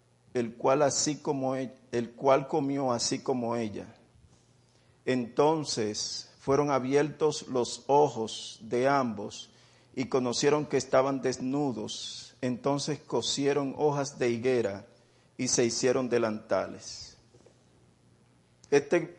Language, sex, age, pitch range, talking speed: English, male, 50-69, 115-140 Hz, 105 wpm